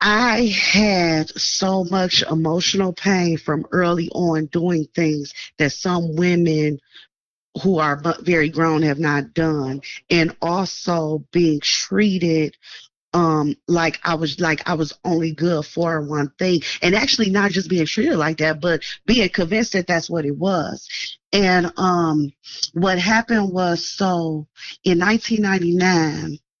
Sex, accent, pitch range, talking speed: female, American, 155-180 Hz, 140 wpm